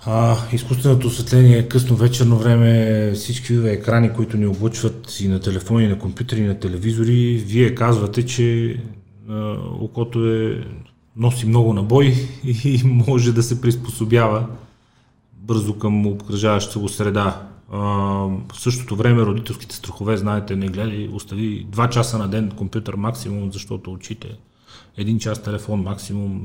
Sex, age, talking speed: male, 30-49, 145 wpm